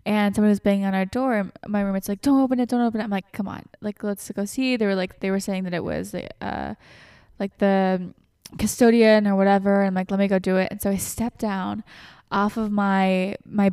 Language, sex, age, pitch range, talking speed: English, female, 10-29, 190-230 Hz, 240 wpm